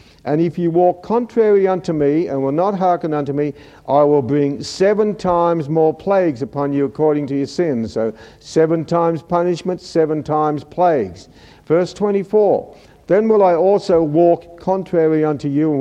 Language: English